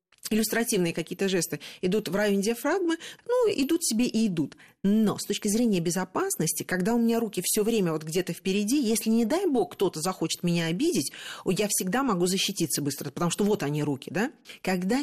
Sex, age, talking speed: female, 40-59, 185 wpm